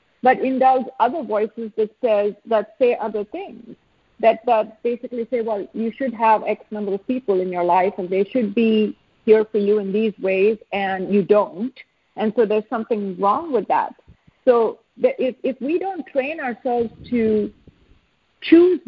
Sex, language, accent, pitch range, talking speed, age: female, English, Indian, 215-280 Hz, 180 wpm, 50-69